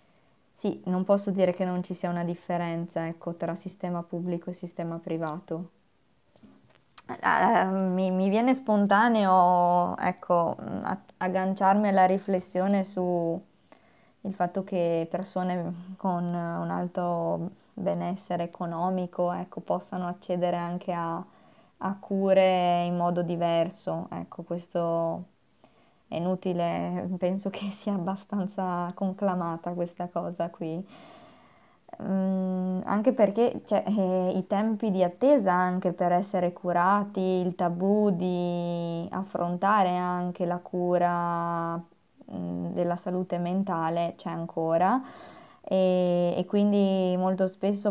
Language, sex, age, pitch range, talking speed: Italian, female, 20-39, 175-190 Hz, 105 wpm